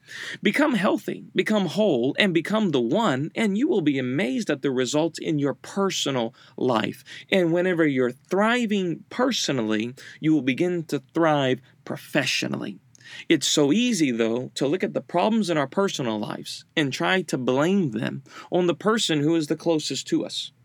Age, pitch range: 40-59, 125-165 Hz